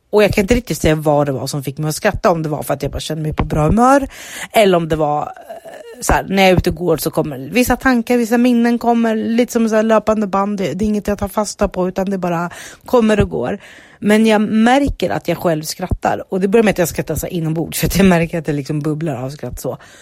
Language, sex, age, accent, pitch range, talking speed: Swedish, female, 30-49, native, 155-210 Hz, 265 wpm